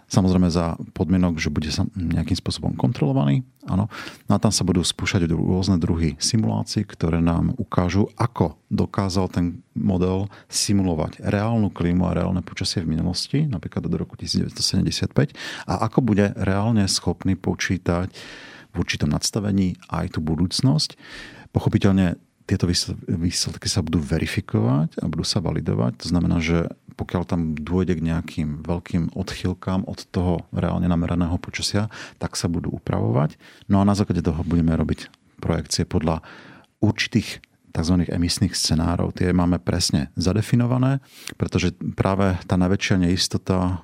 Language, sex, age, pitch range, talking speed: Slovak, male, 40-59, 85-105 Hz, 135 wpm